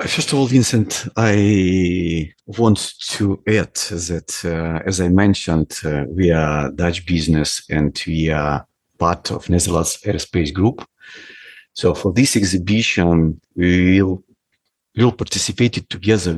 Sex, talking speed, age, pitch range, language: male, 130 wpm, 50-69, 85-110 Hz, English